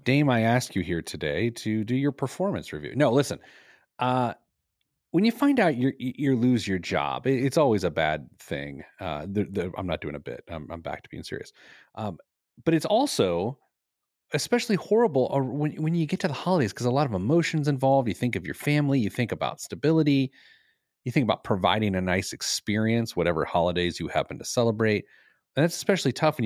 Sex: male